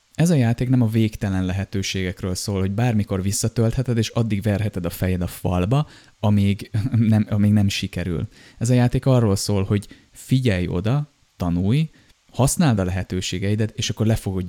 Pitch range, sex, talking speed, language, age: 95-120 Hz, male, 160 wpm, Hungarian, 20-39